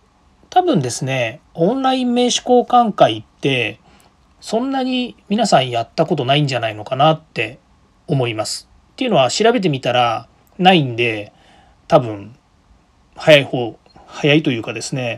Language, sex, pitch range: Japanese, male, 125-180 Hz